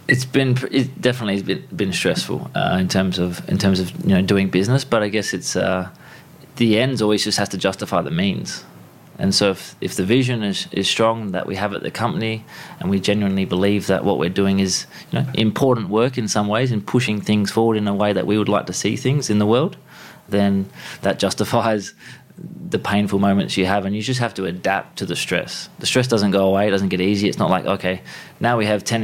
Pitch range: 95-115 Hz